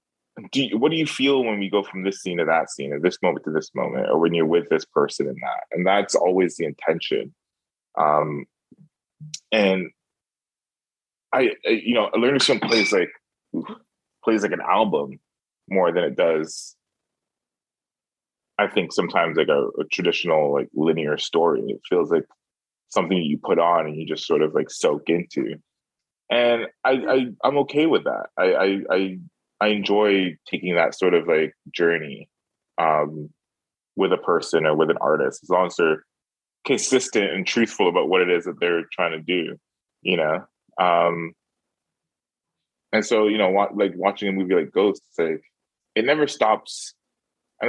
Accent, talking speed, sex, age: American, 165 wpm, male, 20-39